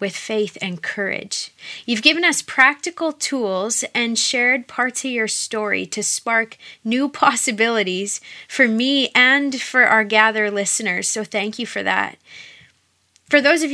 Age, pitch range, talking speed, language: 20-39, 210-255 Hz, 150 wpm, English